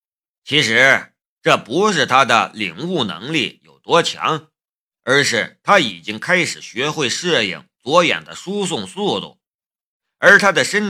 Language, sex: Chinese, male